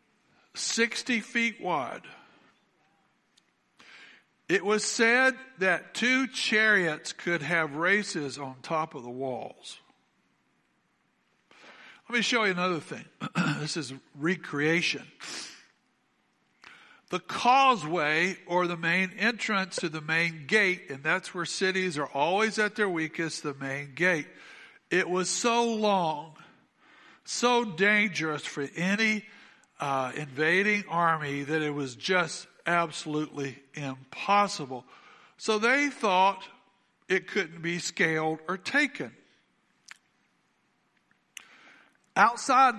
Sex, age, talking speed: male, 60-79, 105 wpm